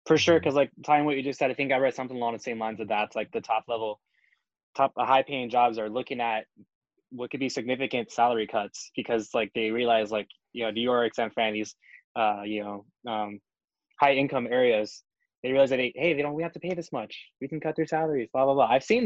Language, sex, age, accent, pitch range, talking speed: English, male, 20-39, American, 115-140 Hz, 250 wpm